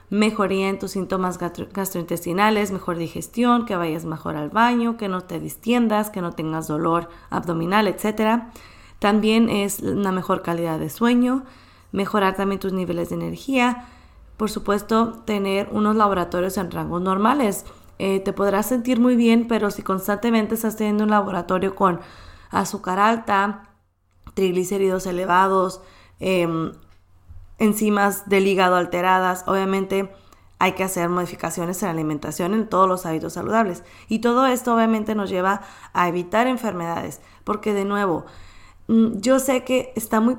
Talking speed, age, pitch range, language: 145 wpm, 20-39, 180-220 Hz, Spanish